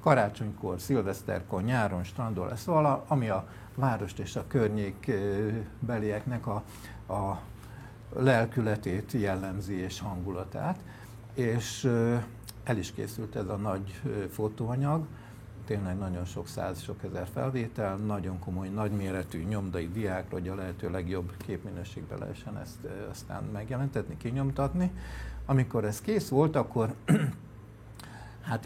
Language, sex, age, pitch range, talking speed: Hungarian, male, 60-79, 100-125 Hz, 115 wpm